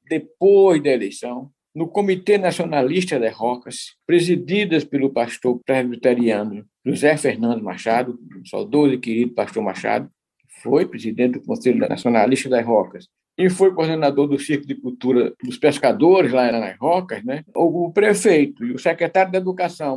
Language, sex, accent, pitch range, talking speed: Portuguese, male, Brazilian, 145-220 Hz, 145 wpm